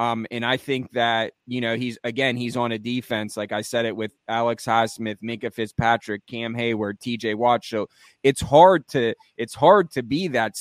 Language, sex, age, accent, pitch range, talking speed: English, male, 20-39, American, 115-130 Hz, 200 wpm